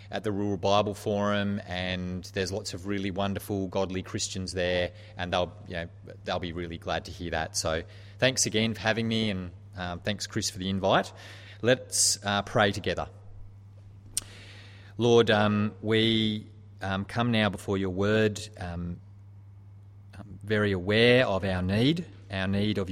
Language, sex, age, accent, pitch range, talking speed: English, male, 30-49, Australian, 95-105 Hz, 155 wpm